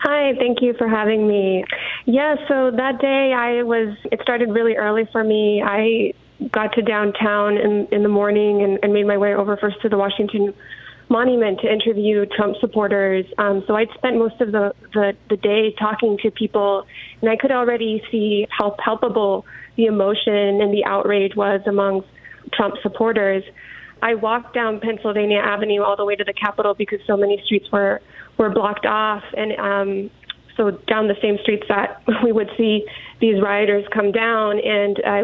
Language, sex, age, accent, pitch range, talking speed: English, female, 20-39, American, 205-230 Hz, 180 wpm